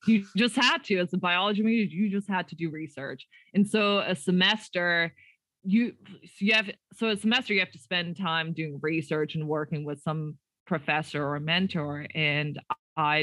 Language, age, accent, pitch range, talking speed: English, 20-39, American, 155-185 Hz, 190 wpm